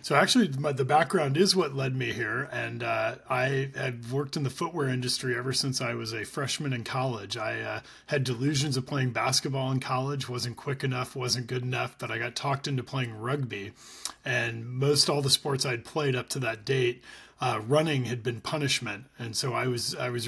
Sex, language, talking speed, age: male, English, 205 wpm, 30-49